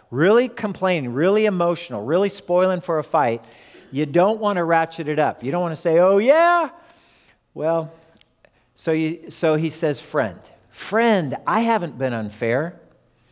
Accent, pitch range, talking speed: American, 145-205 Hz, 160 wpm